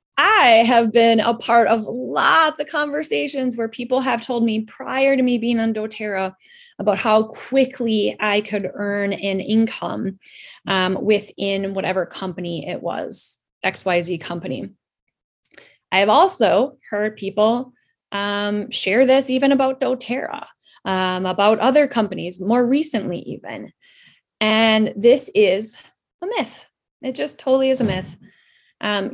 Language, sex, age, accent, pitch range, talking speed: English, female, 20-39, American, 195-250 Hz, 135 wpm